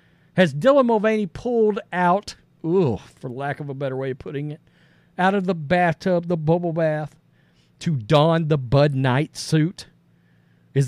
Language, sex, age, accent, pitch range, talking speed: English, male, 50-69, American, 155-215 Hz, 155 wpm